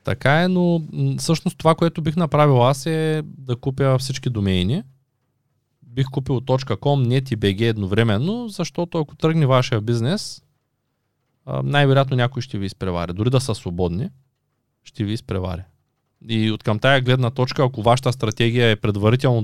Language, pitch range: Bulgarian, 105-140 Hz